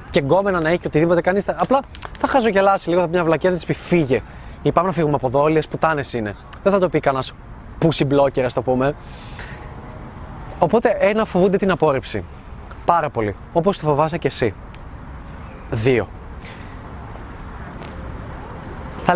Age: 20-39